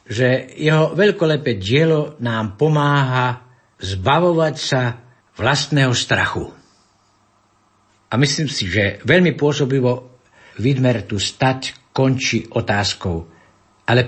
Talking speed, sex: 95 wpm, male